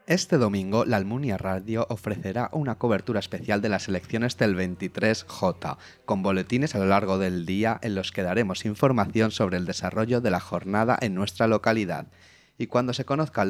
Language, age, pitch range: Spanish, 30-49, 95-120 Hz